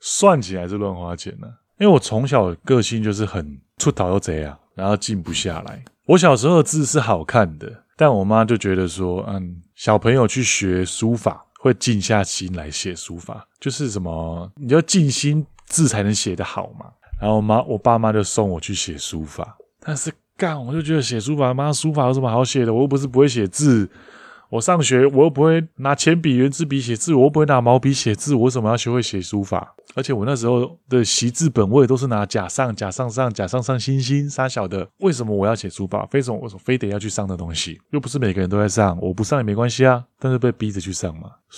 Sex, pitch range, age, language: male, 95-135 Hz, 20-39, Chinese